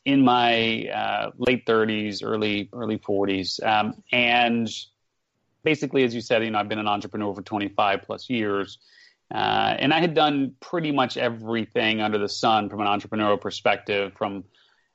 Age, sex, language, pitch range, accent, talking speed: 30-49, male, English, 105-125 Hz, American, 160 wpm